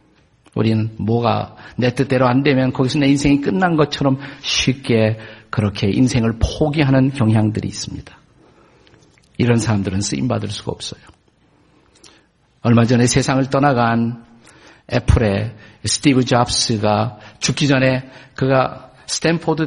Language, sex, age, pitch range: Korean, male, 50-69, 115-150 Hz